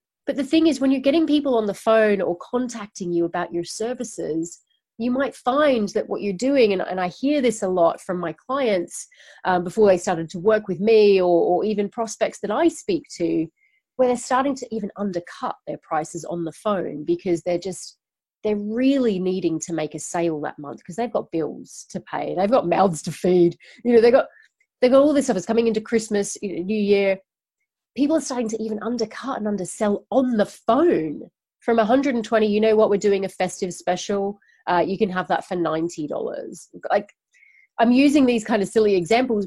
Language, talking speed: English, 205 wpm